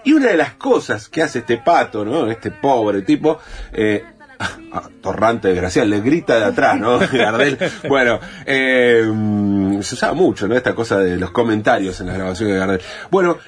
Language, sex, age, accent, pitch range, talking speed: Spanish, male, 30-49, Argentinian, 100-150 Hz, 185 wpm